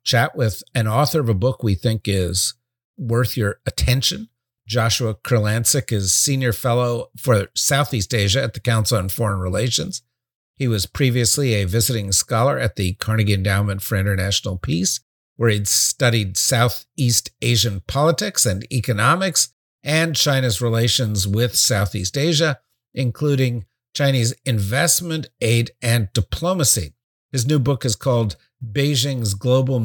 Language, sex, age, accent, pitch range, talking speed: English, male, 50-69, American, 115-140 Hz, 135 wpm